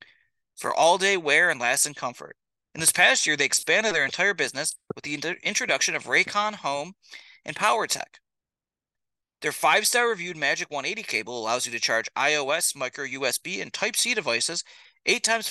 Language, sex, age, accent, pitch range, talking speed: English, male, 30-49, American, 140-195 Hz, 150 wpm